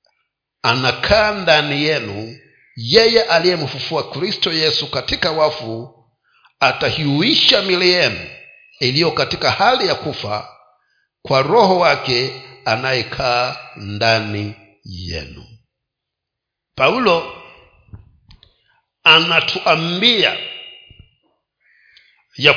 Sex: male